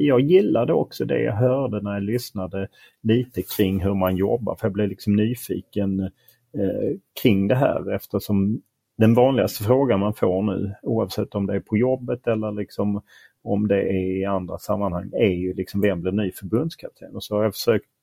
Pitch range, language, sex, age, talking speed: 95-115 Hz, Swedish, male, 30-49, 180 wpm